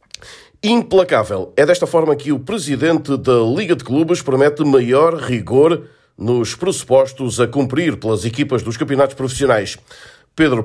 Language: Portuguese